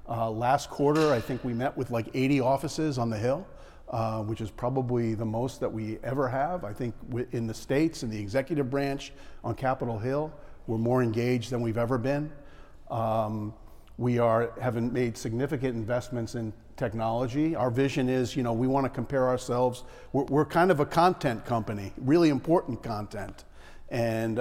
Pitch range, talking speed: 115-135 Hz, 180 wpm